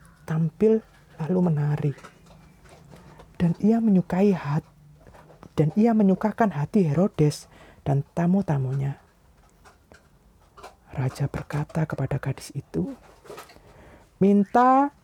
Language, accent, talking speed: Indonesian, native, 85 wpm